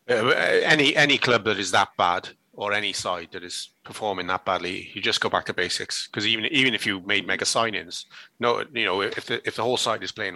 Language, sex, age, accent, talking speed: English, male, 30-49, British, 240 wpm